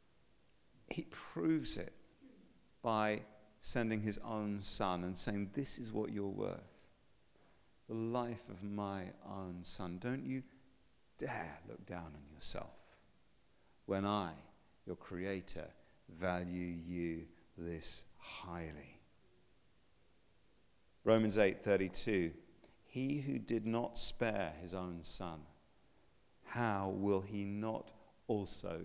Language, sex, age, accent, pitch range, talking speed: English, male, 50-69, British, 90-110 Hz, 105 wpm